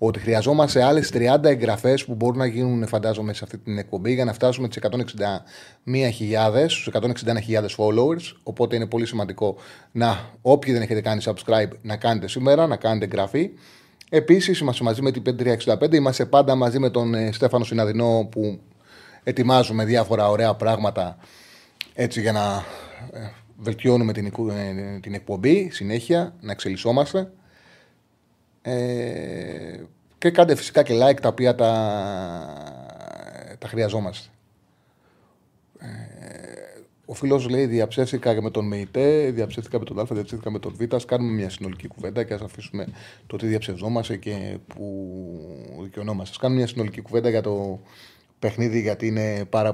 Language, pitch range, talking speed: Greek, 105-125 Hz, 135 wpm